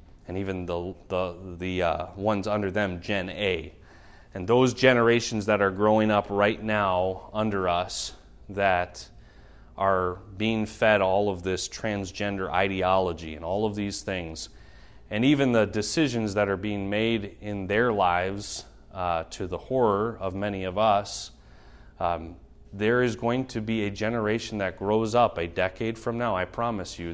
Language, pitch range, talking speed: English, 90-105 Hz, 160 wpm